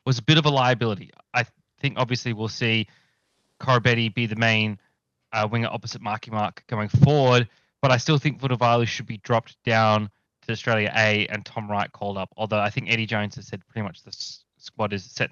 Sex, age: male, 20-39